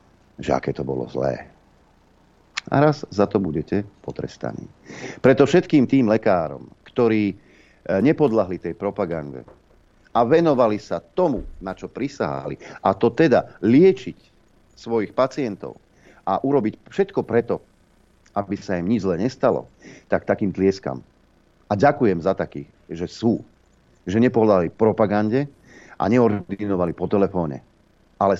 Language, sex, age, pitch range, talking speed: Slovak, male, 50-69, 80-105 Hz, 125 wpm